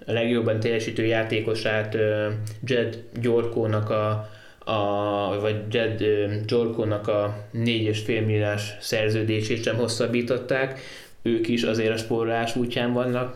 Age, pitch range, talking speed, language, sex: 20-39, 105-115 Hz, 100 wpm, Hungarian, male